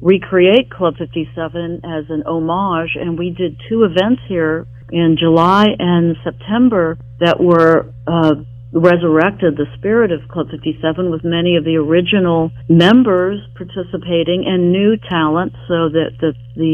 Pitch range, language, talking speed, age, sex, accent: 155-180 Hz, English, 140 wpm, 50-69, female, American